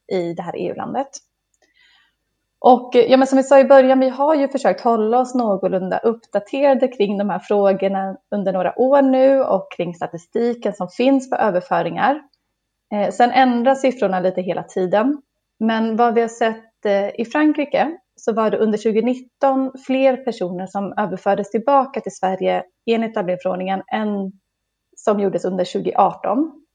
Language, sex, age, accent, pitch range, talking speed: Swedish, female, 30-49, native, 195-255 Hz, 155 wpm